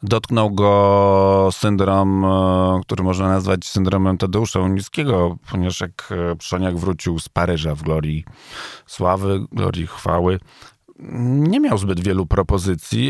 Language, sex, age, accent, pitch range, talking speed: Polish, male, 40-59, native, 90-120 Hz, 115 wpm